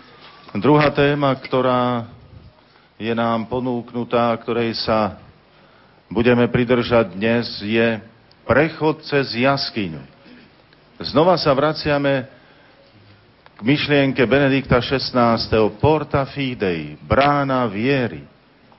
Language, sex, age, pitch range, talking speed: Slovak, male, 40-59, 110-135 Hz, 85 wpm